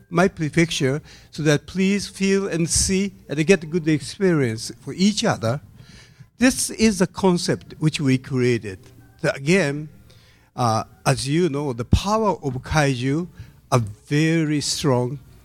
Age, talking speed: 50-69, 140 wpm